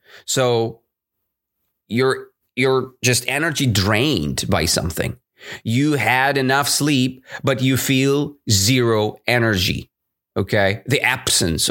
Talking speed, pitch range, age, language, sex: 100 wpm, 105-155 Hz, 30-49, English, male